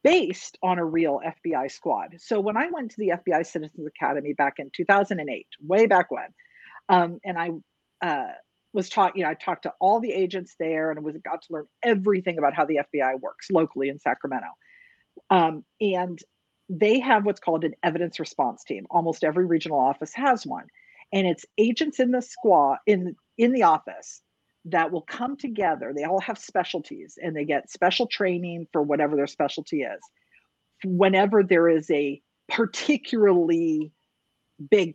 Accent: American